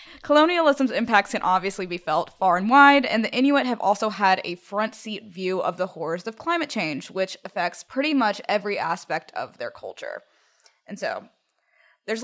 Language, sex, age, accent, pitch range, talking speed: English, female, 20-39, American, 190-275 Hz, 180 wpm